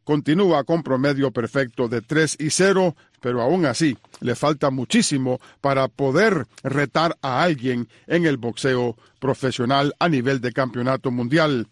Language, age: Spanish, 50-69